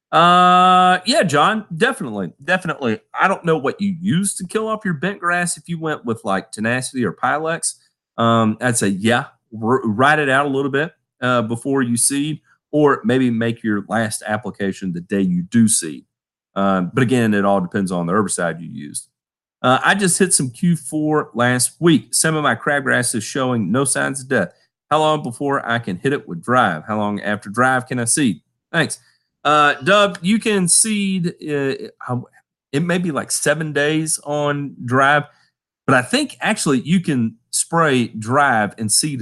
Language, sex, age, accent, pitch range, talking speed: English, male, 40-59, American, 115-165 Hz, 185 wpm